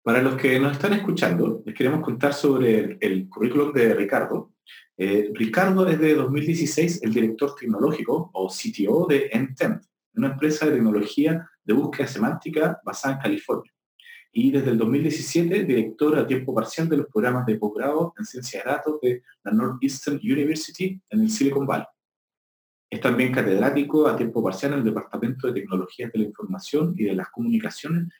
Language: Spanish